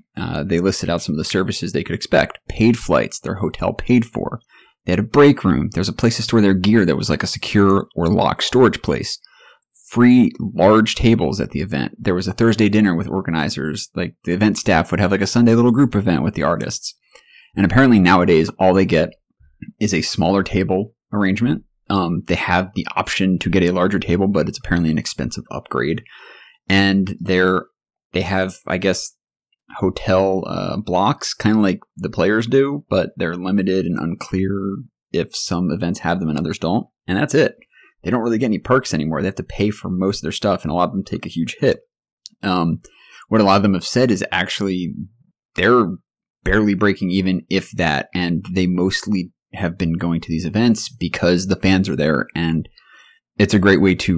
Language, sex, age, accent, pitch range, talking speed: English, male, 30-49, American, 90-105 Hz, 205 wpm